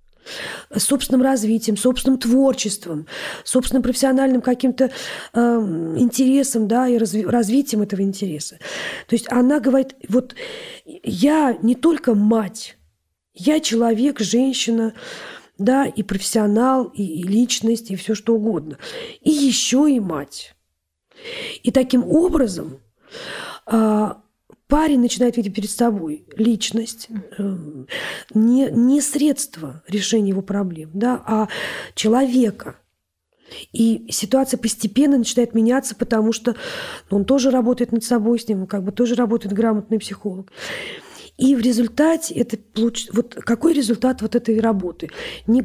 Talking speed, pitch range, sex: 115 wpm, 205-260 Hz, female